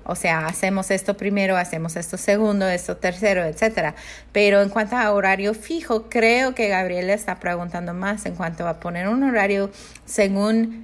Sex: female